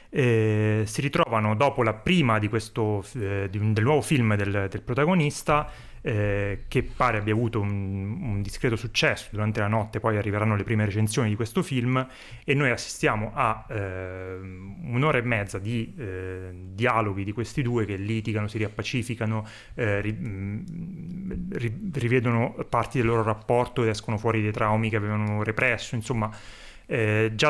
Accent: native